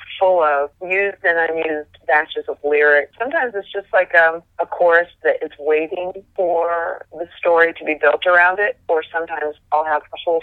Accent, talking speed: American, 185 wpm